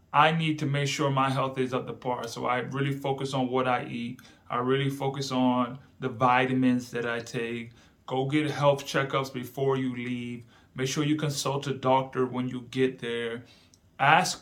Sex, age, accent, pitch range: male, 30-49, American, 125-145 Hz